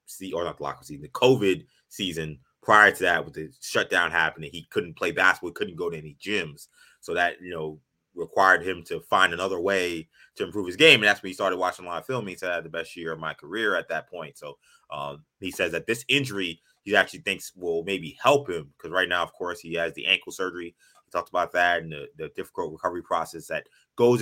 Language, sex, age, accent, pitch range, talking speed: English, male, 20-39, American, 85-120 Hz, 240 wpm